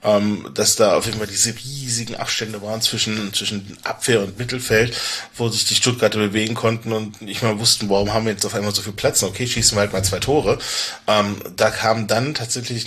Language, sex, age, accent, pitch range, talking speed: German, male, 20-39, German, 105-115 Hz, 215 wpm